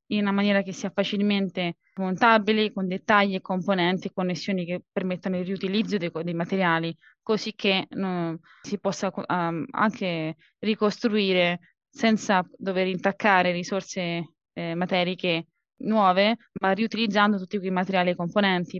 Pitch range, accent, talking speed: 180-210 Hz, native, 135 wpm